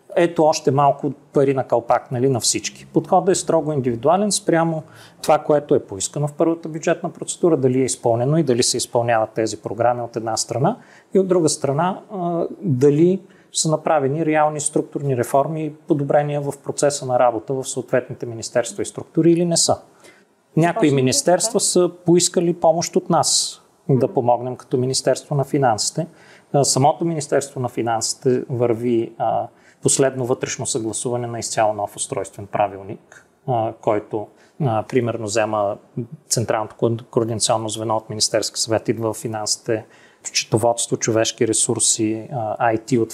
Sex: male